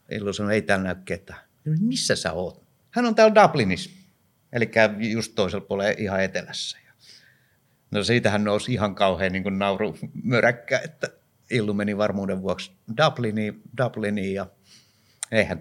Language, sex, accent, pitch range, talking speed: Finnish, male, native, 100-125 Hz, 130 wpm